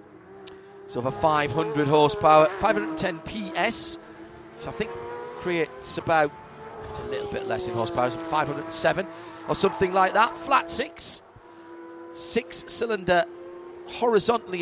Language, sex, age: English, male, 40-59